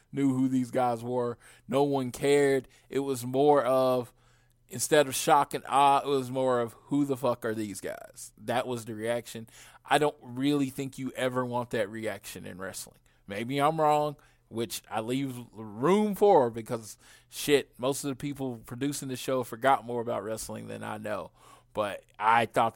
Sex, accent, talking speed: male, American, 180 wpm